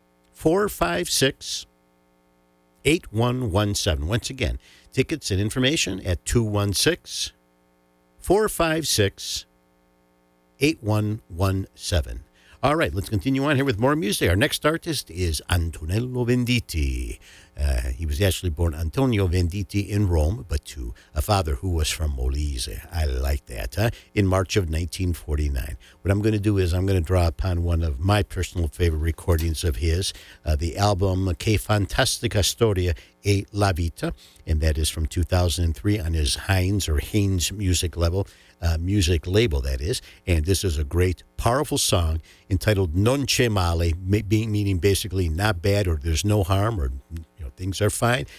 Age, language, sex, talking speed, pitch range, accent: 60-79, English, male, 140 wpm, 80-105 Hz, American